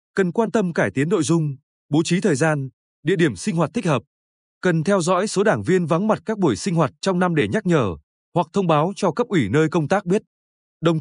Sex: male